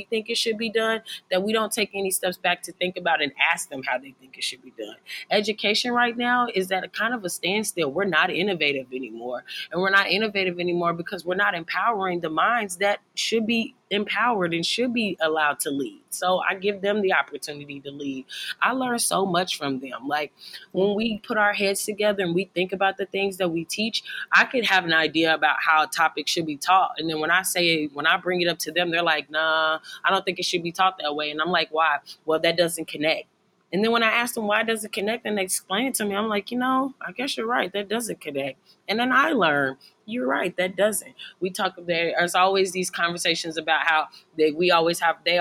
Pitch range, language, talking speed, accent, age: 160-210 Hz, English, 240 wpm, American, 20-39